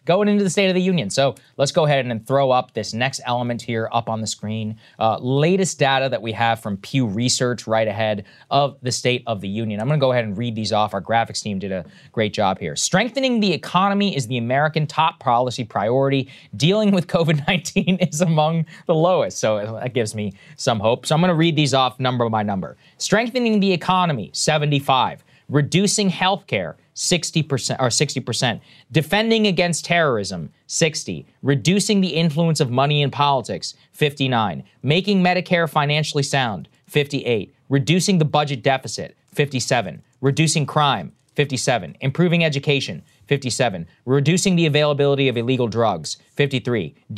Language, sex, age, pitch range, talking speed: English, male, 20-39, 125-170 Hz, 170 wpm